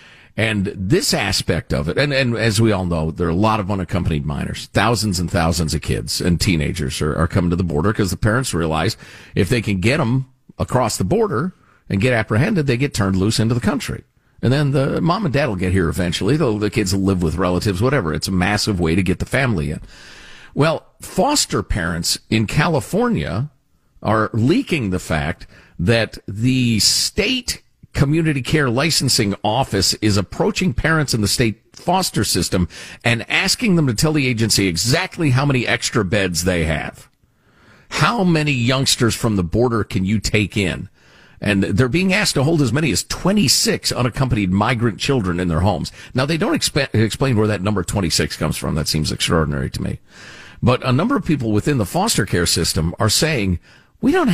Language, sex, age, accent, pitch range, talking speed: English, male, 50-69, American, 95-135 Hz, 190 wpm